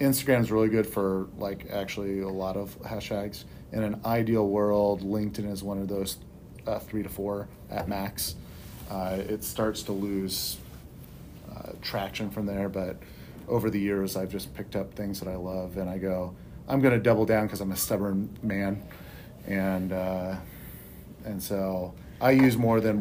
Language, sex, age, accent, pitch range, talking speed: English, male, 40-59, American, 95-115 Hz, 170 wpm